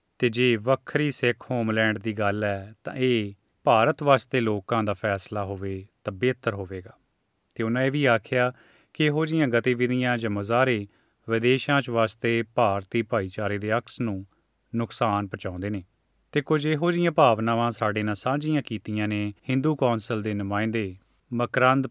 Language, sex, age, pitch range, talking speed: Urdu, male, 30-49, 105-125 Hz, 140 wpm